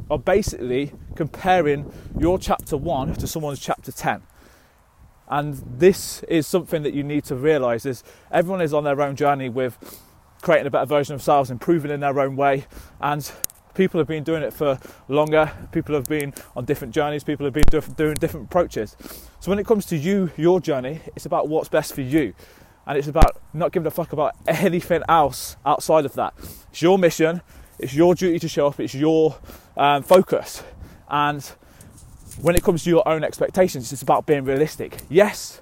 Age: 20-39